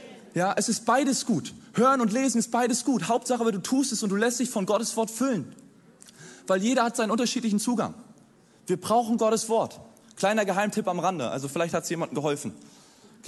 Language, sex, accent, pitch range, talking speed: German, male, German, 160-225 Hz, 200 wpm